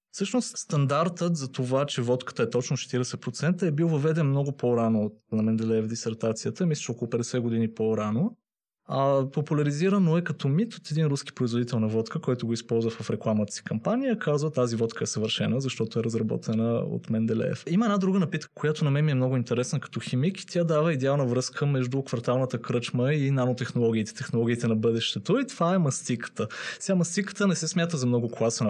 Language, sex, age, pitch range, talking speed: Bulgarian, male, 20-39, 120-170 Hz, 180 wpm